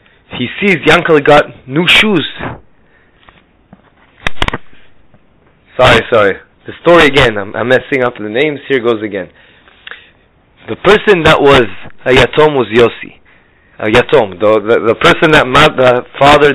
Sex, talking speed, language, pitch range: male, 140 wpm, English, 120-155 Hz